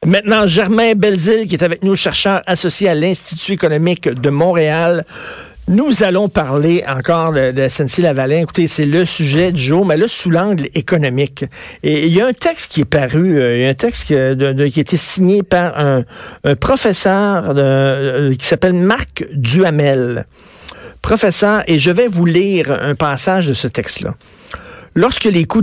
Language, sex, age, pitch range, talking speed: French, male, 50-69, 140-185 Hz, 185 wpm